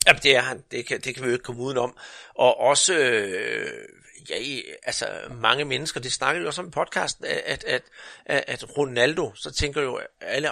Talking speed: 175 wpm